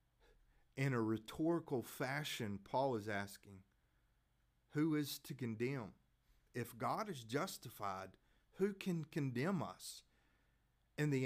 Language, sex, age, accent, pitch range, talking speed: English, male, 40-59, American, 95-130 Hz, 110 wpm